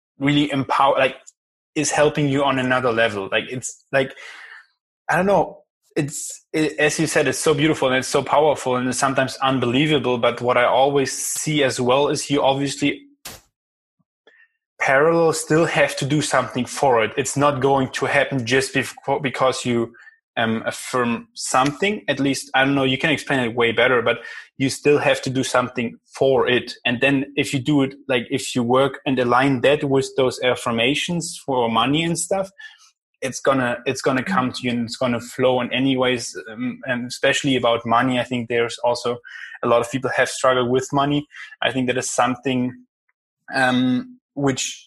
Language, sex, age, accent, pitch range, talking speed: English, male, 20-39, German, 125-145 Hz, 185 wpm